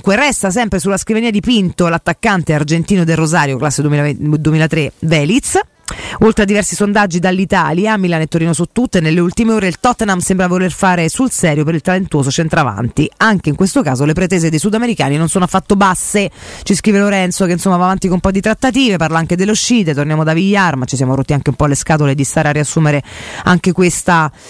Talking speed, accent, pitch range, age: 205 wpm, native, 155-205 Hz, 30-49